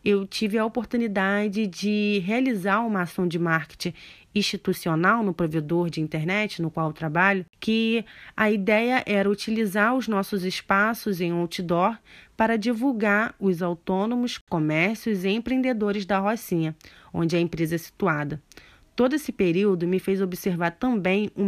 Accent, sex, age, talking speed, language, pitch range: Brazilian, female, 20-39, 140 wpm, Portuguese, 180-225 Hz